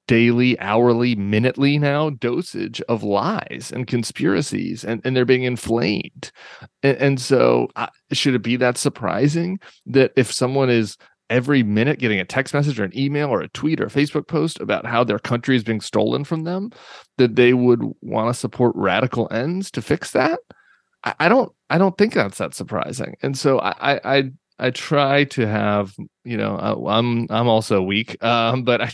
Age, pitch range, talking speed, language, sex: 30-49, 105-135 Hz, 190 wpm, English, male